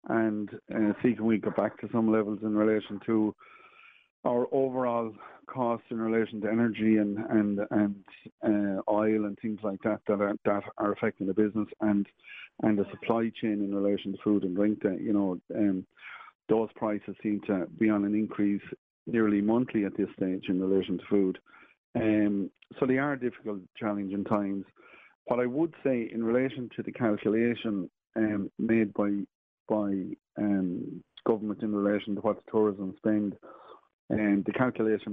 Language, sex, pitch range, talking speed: English, male, 100-115 Hz, 170 wpm